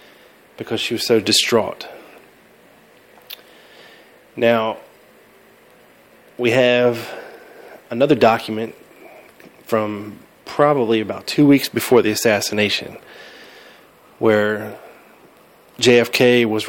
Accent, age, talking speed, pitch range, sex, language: American, 20-39, 75 wpm, 110-125 Hz, male, English